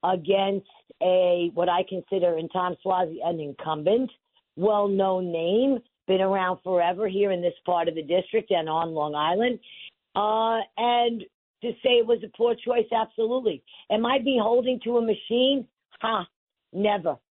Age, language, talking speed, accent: 50-69, English, 150 wpm, American